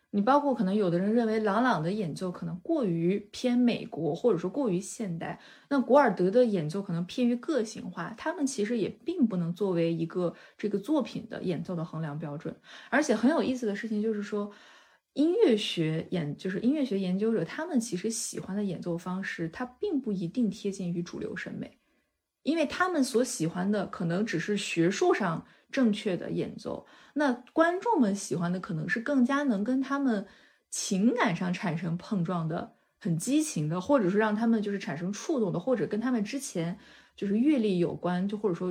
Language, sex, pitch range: Chinese, female, 180-250 Hz